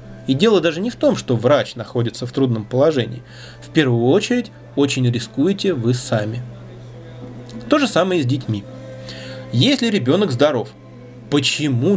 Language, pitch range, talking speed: Russian, 115-150 Hz, 145 wpm